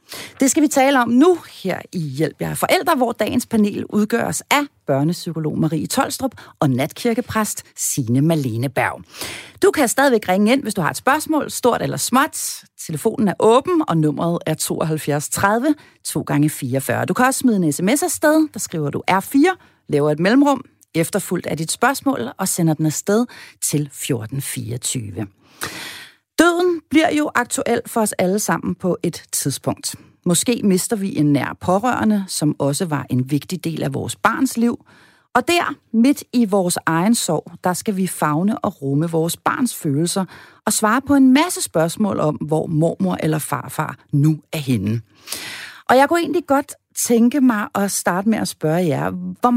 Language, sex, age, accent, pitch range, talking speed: Danish, female, 40-59, native, 155-245 Hz, 170 wpm